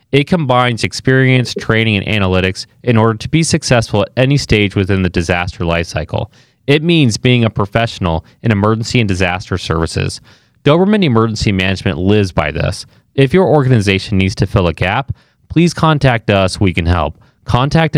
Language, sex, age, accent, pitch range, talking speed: English, male, 30-49, American, 105-150 Hz, 165 wpm